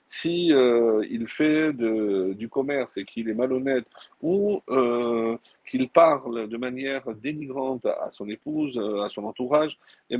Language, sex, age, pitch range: French, male, 50-69, 120-155 Hz